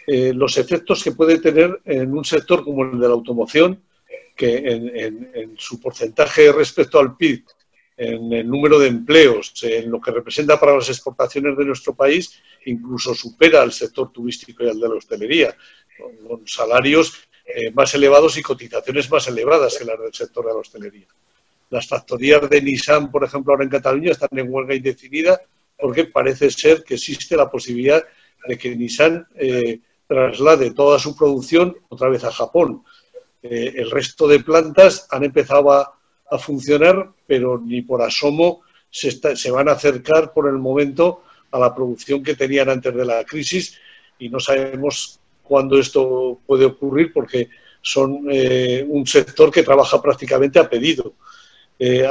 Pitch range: 130-190 Hz